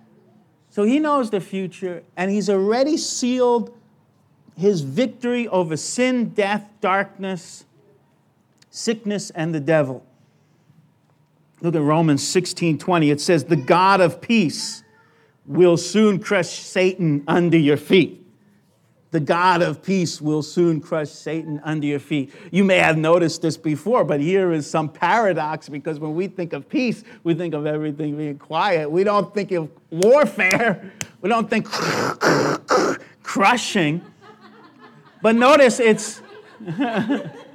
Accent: American